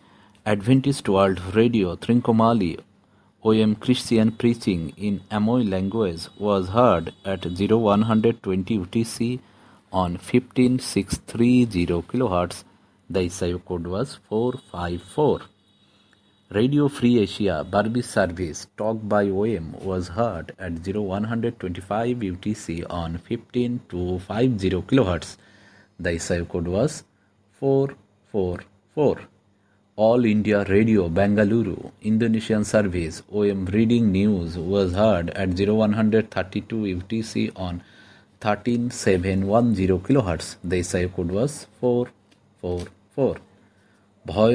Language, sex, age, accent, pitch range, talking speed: English, male, 50-69, Indian, 95-115 Hz, 95 wpm